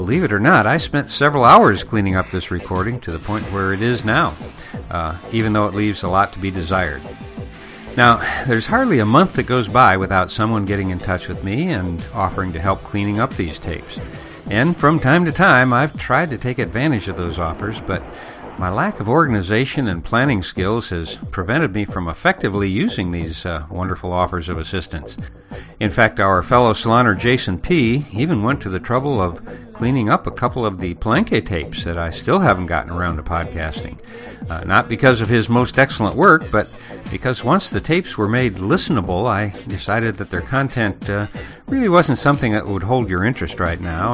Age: 60-79